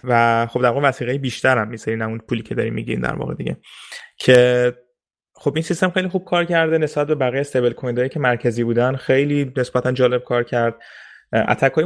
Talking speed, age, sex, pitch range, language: 190 wpm, 20-39, male, 115-150 Hz, Persian